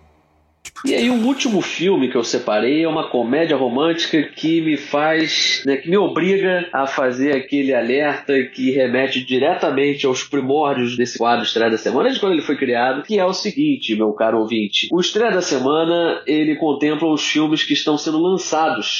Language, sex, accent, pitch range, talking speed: Portuguese, male, Brazilian, 125-170 Hz, 185 wpm